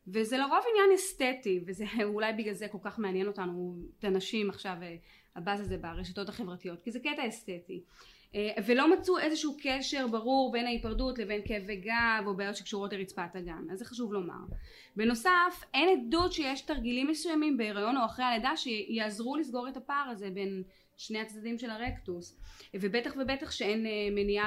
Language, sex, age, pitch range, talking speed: Hebrew, female, 20-39, 200-265 Hz, 165 wpm